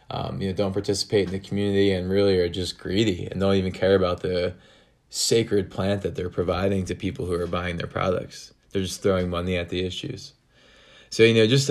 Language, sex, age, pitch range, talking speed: English, male, 20-39, 90-105 Hz, 215 wpm